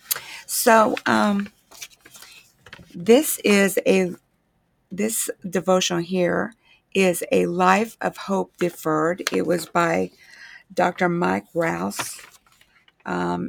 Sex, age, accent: female, 50-69, American